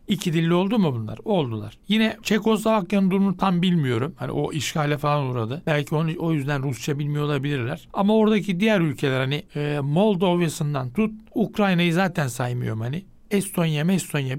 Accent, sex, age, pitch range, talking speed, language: native, male, 60-79, 145-195 Hz, 155 wpm, Turkish